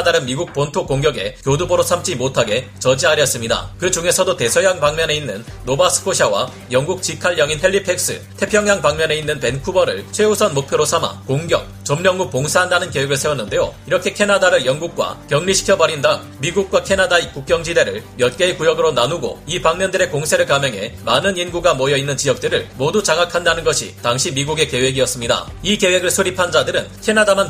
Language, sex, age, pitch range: Korean, male, 40-59, 140-195 Hz